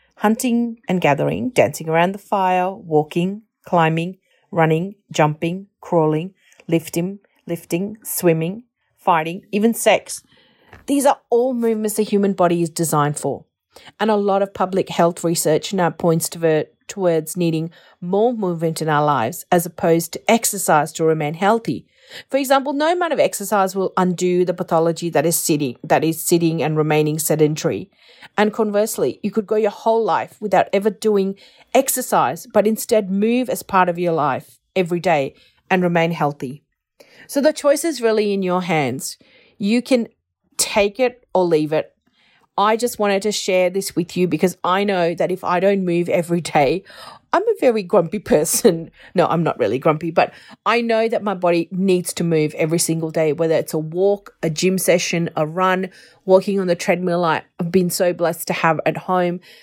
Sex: female